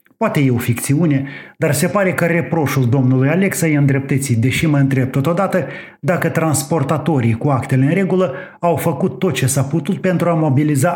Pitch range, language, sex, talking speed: 135-175 Hz, Romanian, male, 170 wpm